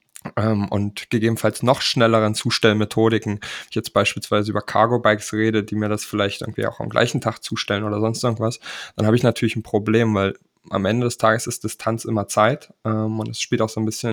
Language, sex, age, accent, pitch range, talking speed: German, male, 20-39, German, 110-120 Hz, 195 wpm